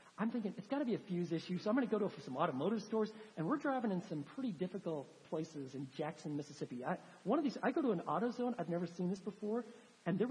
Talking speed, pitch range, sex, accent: 270 wpm, 175-245 Hz, male, American